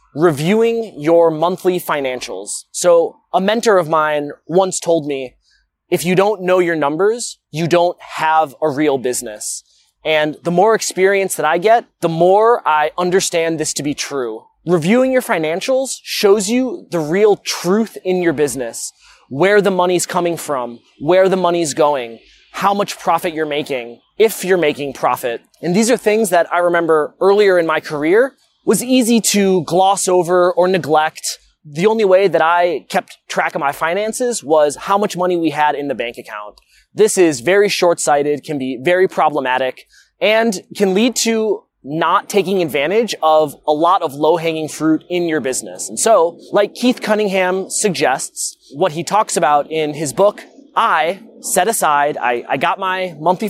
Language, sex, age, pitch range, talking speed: English, male, 20-39, 155-205 Hz, 170 wpm